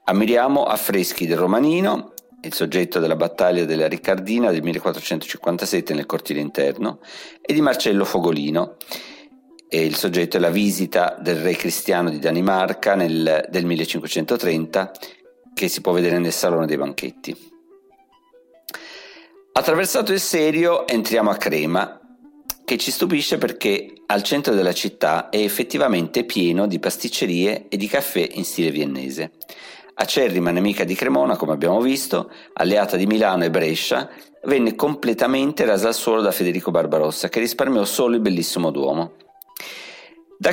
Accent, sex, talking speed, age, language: native, male, 135 wpm, 50-69, Italian